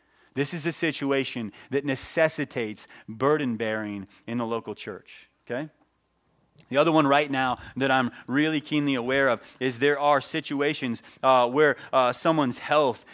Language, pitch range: English, 115-145 Hz